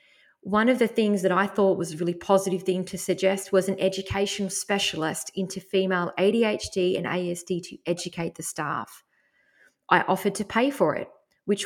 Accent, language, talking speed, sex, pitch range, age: Australian, English, 175 wpm, female, 175-210 Hz, 20-39